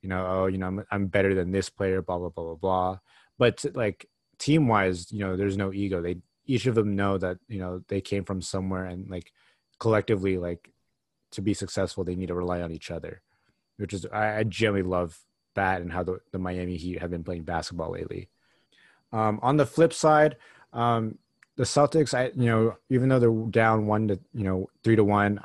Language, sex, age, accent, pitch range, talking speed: English, male, 30-49, American, 95-110 Hz, 215 wpm